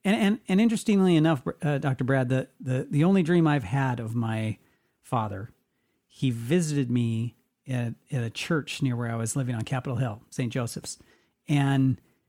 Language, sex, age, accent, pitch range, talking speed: English, male, 40-59, American, 130-180 Hz, 175 wpm